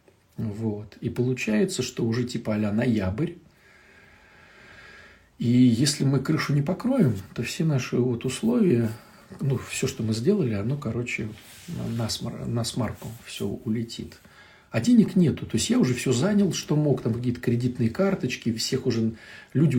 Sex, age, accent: male, 50-69, native